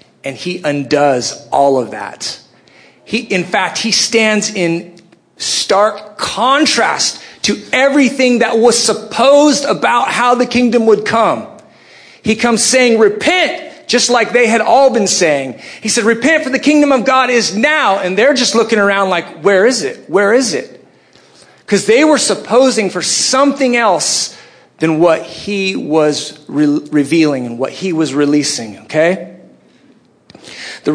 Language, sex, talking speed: English, male, 150 wpm